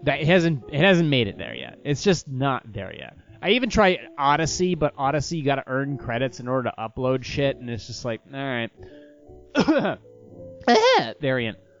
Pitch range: 115-155 Hz